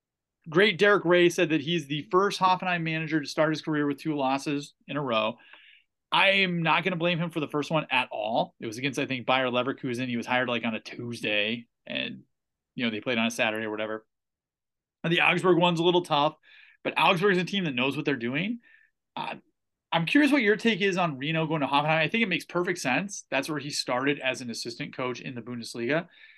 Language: English